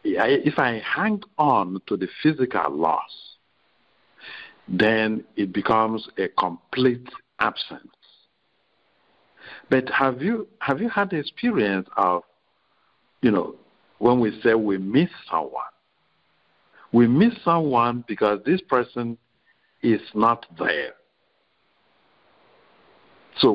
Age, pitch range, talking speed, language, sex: 60-79, 110-155 Hz, 100 wpm, English, male